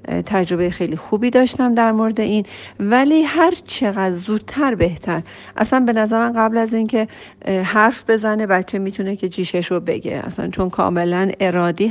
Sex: female